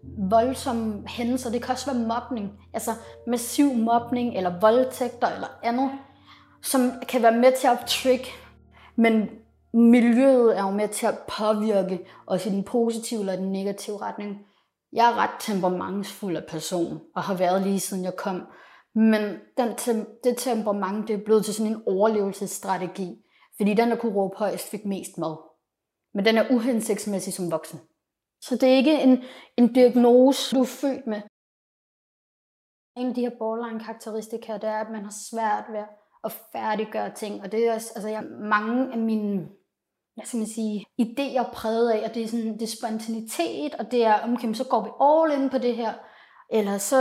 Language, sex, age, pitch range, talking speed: Danish, female, 30-49, 205-245 Hz, 180 wpm